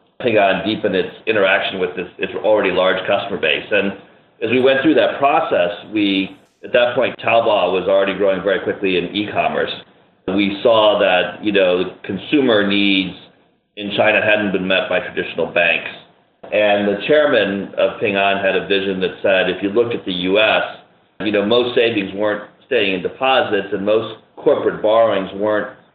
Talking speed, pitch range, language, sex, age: 175 wpm, 95-110 Hz, English, male, 40-59